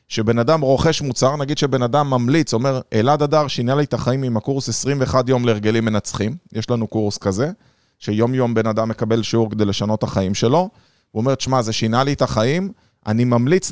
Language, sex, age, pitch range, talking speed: Hebrew, male, 30-49, 115-145 Hz, 195 wpm